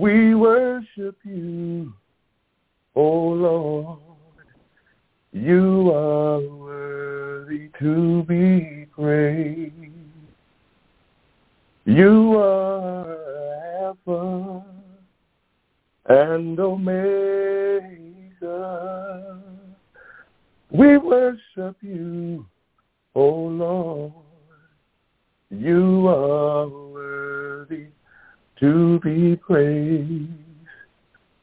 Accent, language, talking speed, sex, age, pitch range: American, English, 50 wpm, male, 50-69, 150-220 Hz